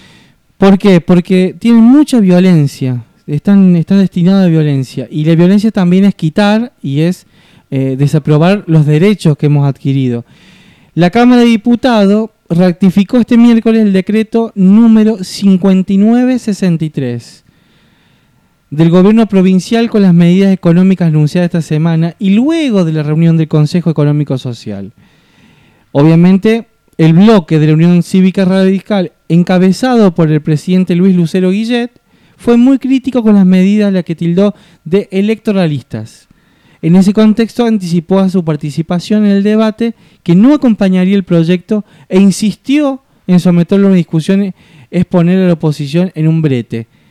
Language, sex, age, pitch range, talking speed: Spanish, male, 20-39, 160-205 Hz, 145 wpm